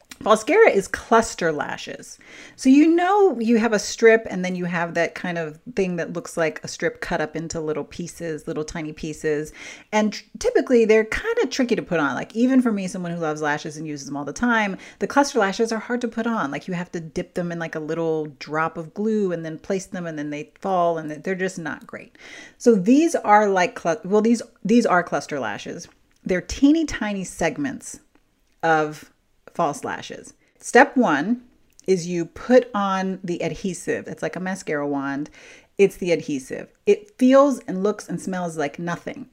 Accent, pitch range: American, 165-235 Hz